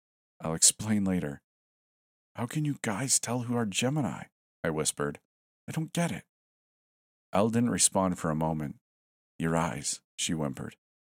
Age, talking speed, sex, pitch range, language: 40-59, 145 wpm, male, 75-105 Hz, English